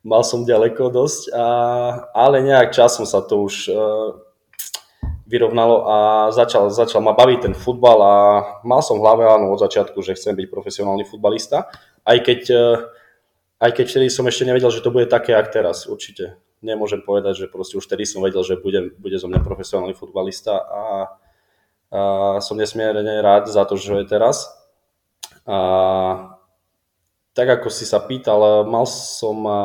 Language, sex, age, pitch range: Slovak, male, 20-39, 100-130 Hz